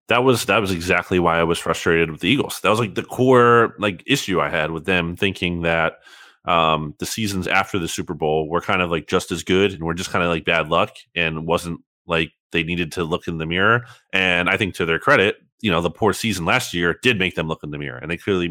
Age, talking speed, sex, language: 30-49, 260 wpm, male, English